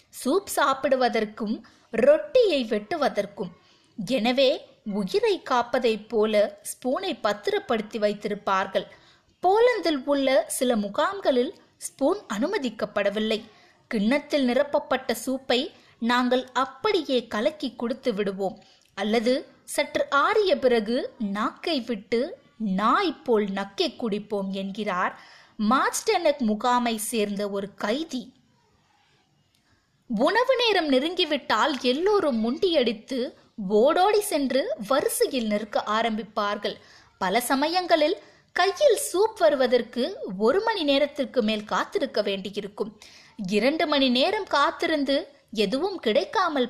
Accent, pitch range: native, 215-300 Hz